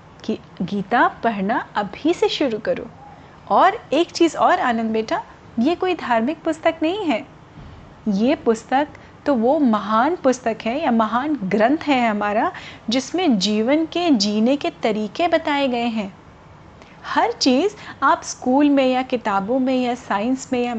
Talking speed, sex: 150 wpm, female